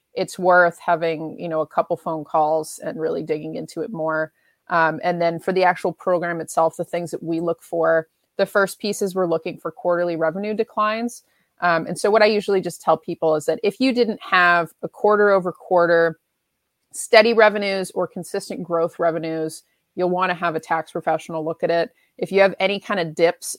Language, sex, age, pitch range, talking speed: English, female, 30-49, 165-185 Hz, 205 wpm